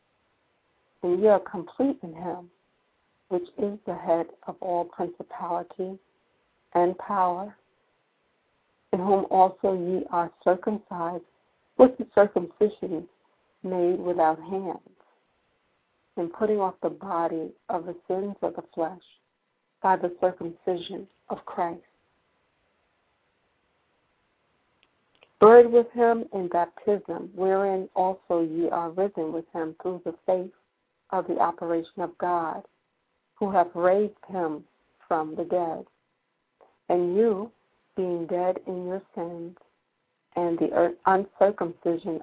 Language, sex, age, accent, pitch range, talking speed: English, female, 60-79, American, 170-195 Hz, 115 wpm